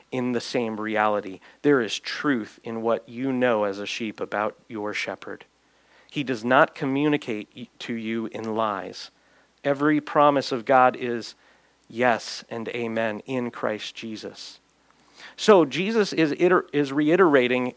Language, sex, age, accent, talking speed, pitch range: English, male, 40-59, American, 140 wpm, 115-145 Hz